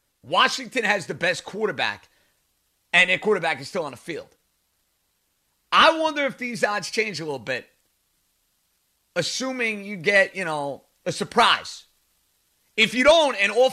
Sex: male